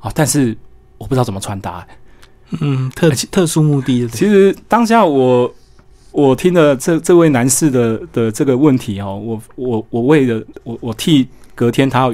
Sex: male